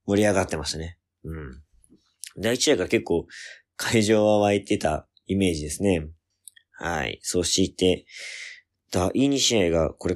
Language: Japanese